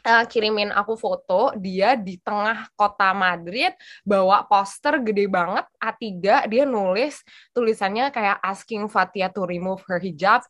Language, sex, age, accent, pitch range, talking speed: Indonesian, female, 20-39, native, 190-250 Hz, 135 wpm